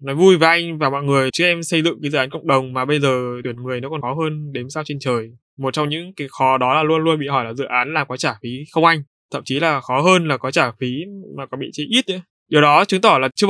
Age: 20-39